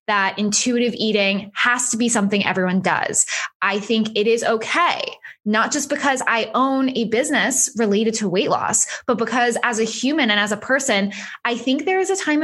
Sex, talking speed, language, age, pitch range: female, 195 wpm, English, 10-29, 195-250 Hz